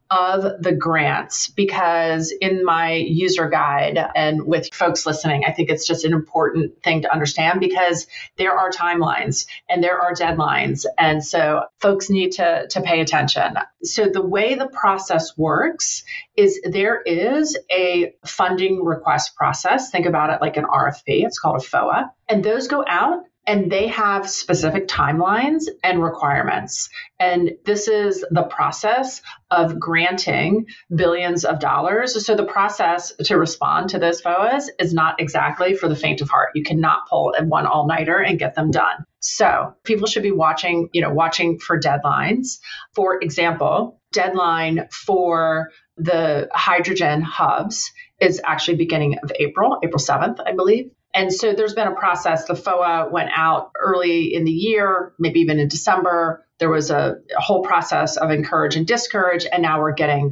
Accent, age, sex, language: American, 30-49, female, English